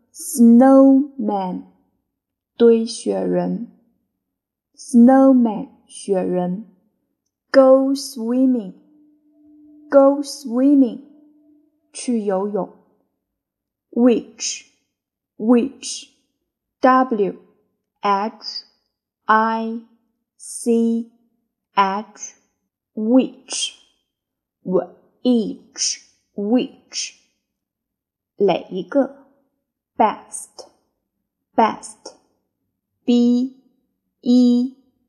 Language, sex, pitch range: Chinese, female, 220-270 Hz